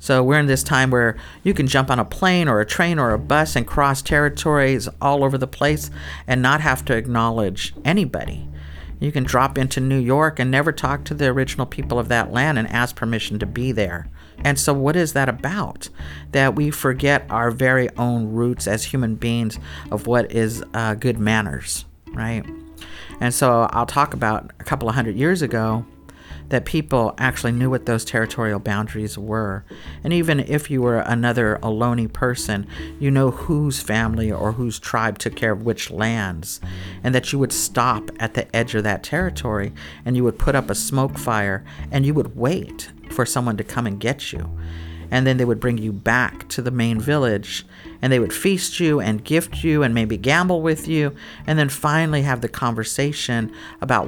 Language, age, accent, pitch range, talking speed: English, 50-69, American, 105-130 Hz, 195 wpm